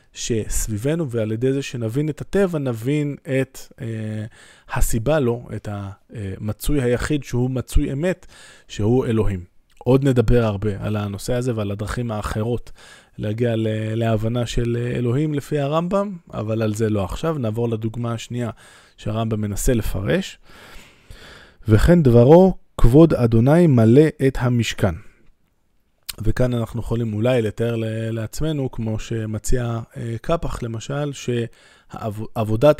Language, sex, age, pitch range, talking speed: Hebrew, male, 20-39, 110-130 Hz, 115 wpm